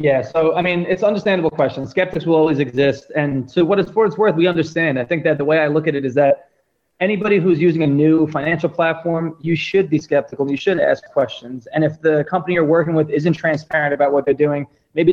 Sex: male